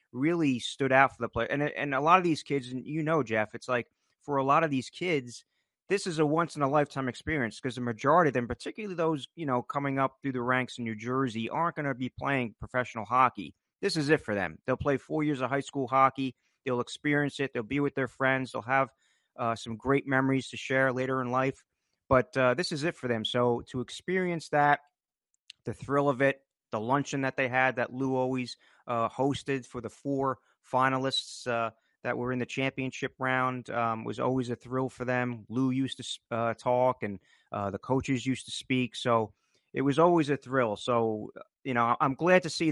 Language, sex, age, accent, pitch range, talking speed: English, male, 30-49, American, 120-135 Hz, 220 wpm